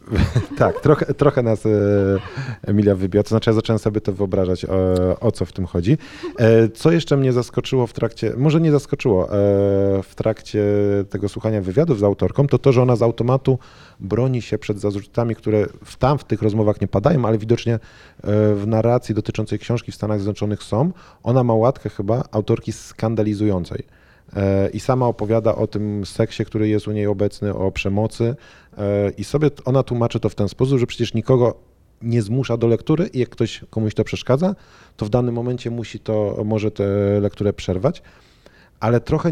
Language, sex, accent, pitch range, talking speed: Polish, male, native, 100-125 Hz, 180 wpm